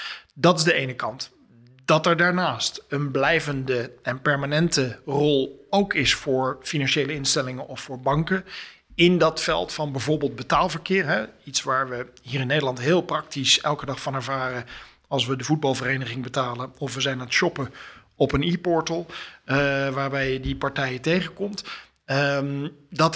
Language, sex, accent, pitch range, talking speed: Dutch, male, Dutch, 130-160 Hz, 155 wpm